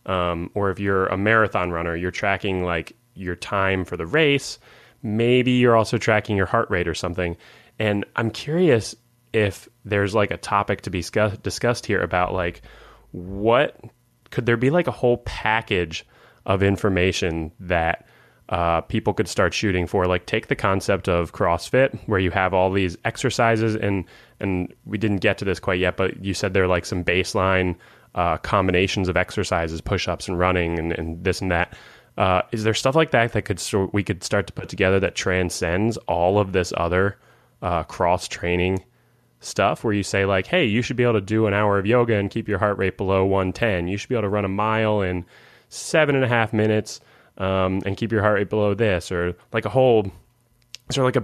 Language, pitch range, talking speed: English, 90-110 Hz, 200 wpm